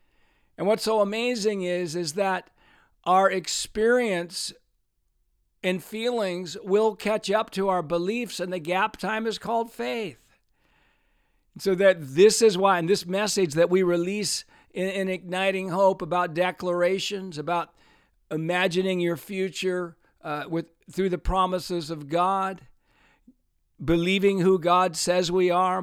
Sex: male